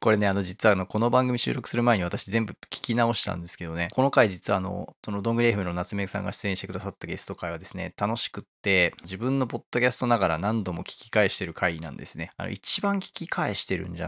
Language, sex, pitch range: Japanese, male, 90-120 Hz